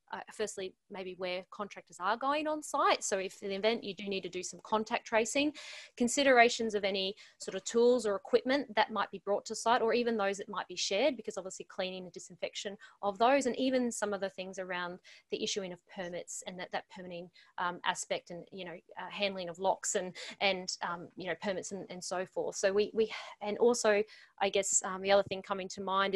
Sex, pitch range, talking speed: female, 190-225 Hz, 225 wpm